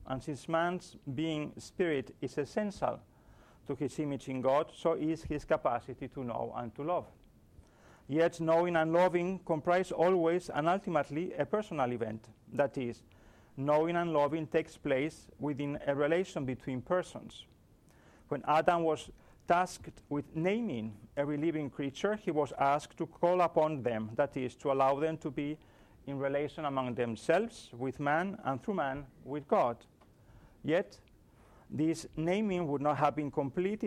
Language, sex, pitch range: English, male, 130-165 Hz